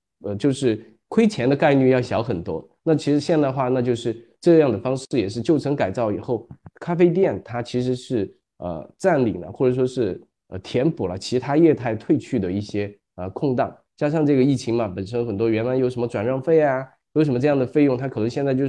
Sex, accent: male, native